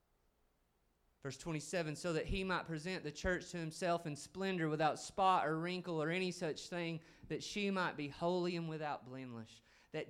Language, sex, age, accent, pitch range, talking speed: English, male, 30-49, American, 115-185 Hz, 180 wpm